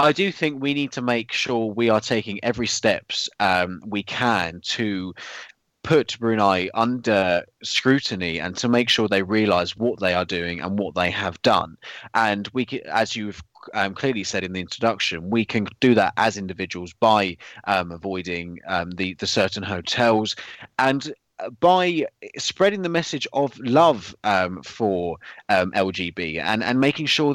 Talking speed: 165 wpm